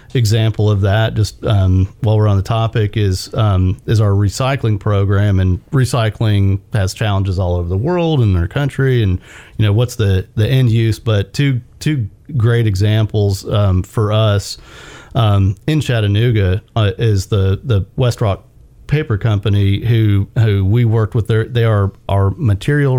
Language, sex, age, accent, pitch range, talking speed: English, male, 40-59, American, 100-120 Hz, 165 wpm